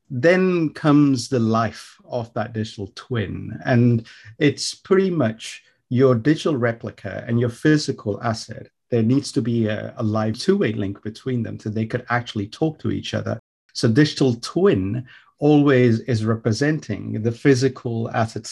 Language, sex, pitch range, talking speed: English, male, 110-135 Hz, 150 wpm